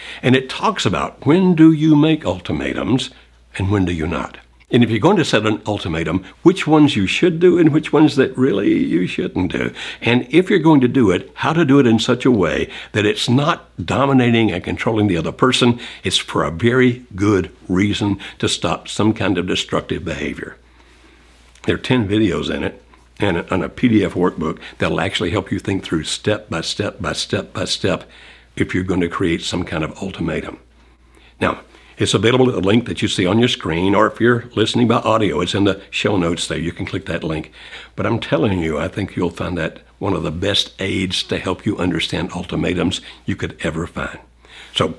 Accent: American